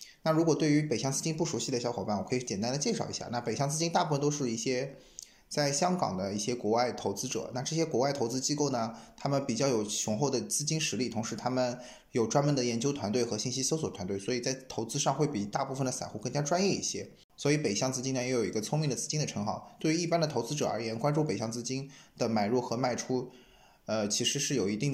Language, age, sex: Chinese, 20-39, male